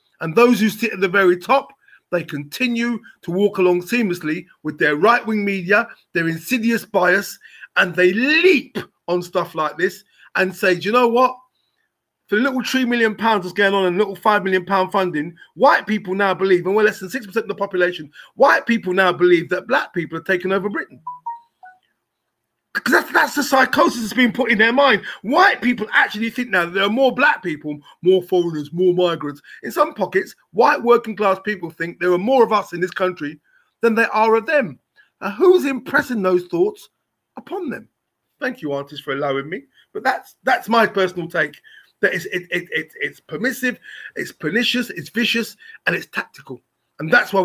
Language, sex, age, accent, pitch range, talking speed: English, male, 30-49, British, 175-240 Hz, 195 wpm